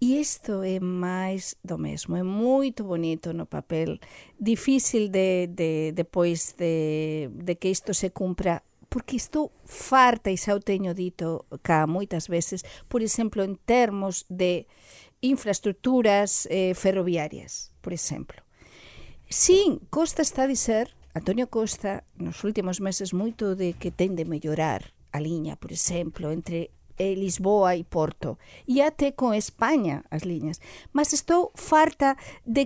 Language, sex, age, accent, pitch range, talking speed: Portuguese, female, 50-69, Spanish, 175-245 Hz, 145 wpm